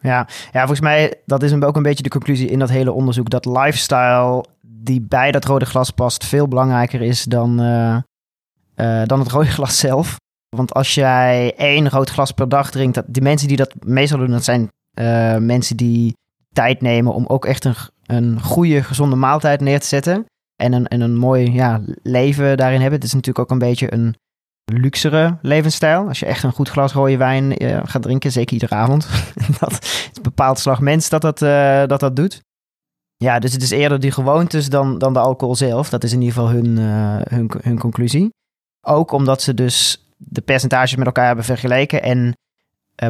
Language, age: Dutch, 20-39